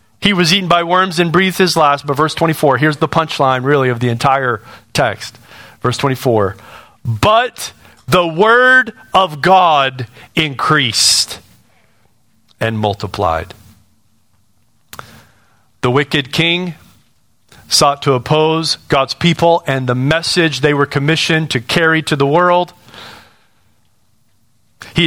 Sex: male